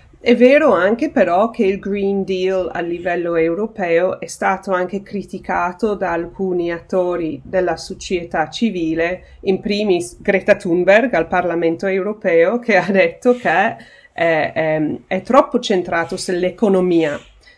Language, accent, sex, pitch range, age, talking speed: Italian, native, female, 165-200 Hz, 30-49, 130 wpm